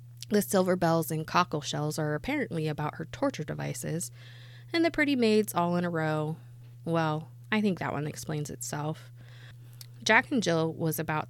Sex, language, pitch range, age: female, English, 120-170 Hz, 20-39